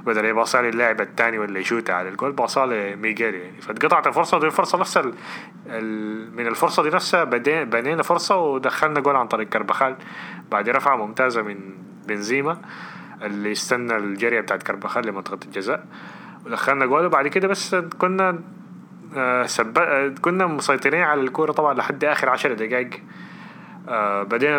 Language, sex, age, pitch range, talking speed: Arabic, male, 20-39, 105-140 Hz, 135 wpm